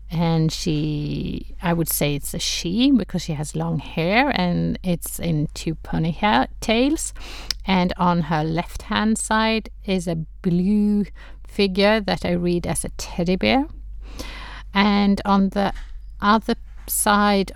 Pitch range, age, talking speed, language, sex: 165-195 Hz, 50-69, 135 wpm, English, female